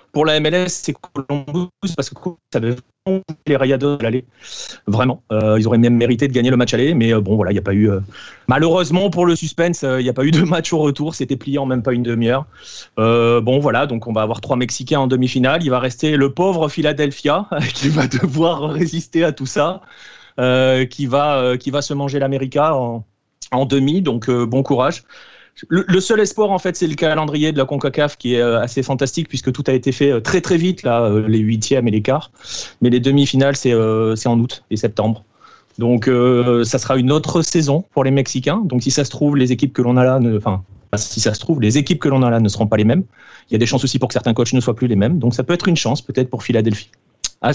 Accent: French